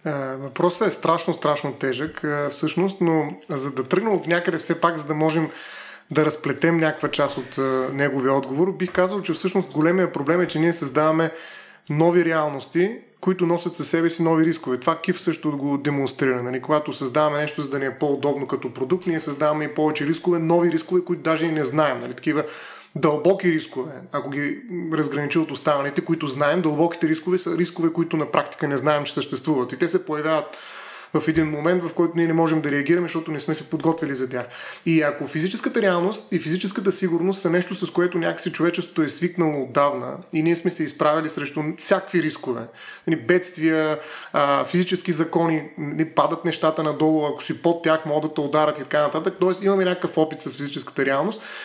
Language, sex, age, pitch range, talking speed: Bulgarian, male, 20-39, 150-180 Hz, 185 wpm